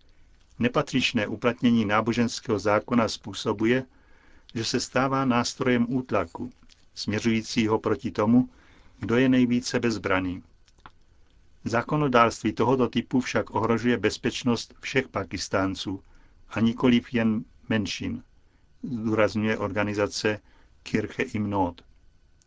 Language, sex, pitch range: Czech, male, 105-125 Hz